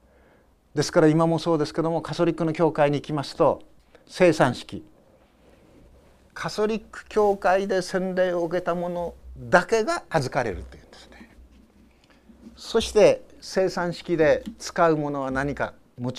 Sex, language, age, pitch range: male, Japanese, 60-79, 115-175 Hz